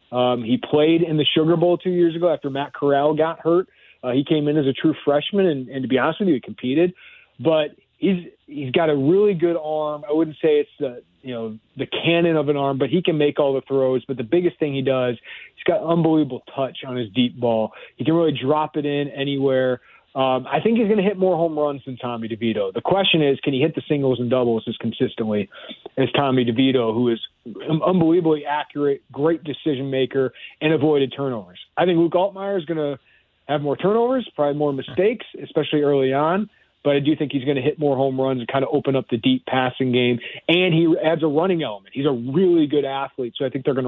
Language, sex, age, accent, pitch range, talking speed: English, male, 30-49, American, 130-160 Hz, 230 wpm